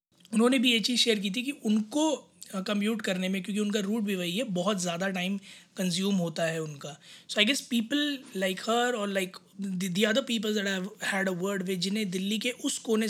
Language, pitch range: Hindi, 185-215 Hz